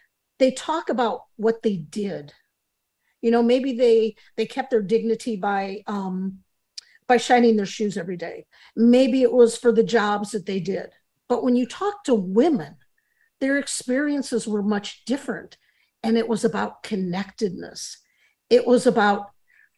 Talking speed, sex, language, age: 150 wpm, female, English, 50-69